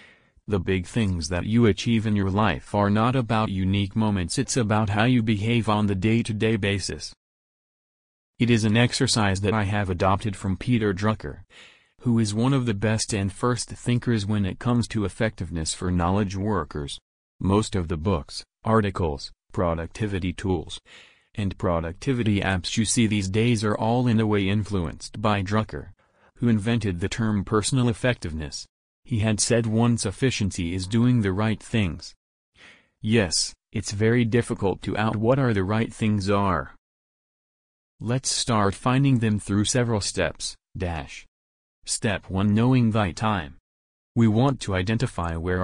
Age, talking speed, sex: 40-59, 160 wpm, male